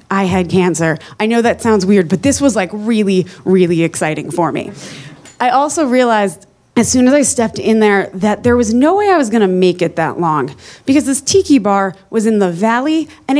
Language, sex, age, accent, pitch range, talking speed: English, female, 20-39, American, 185-260 Hz, 215 wpm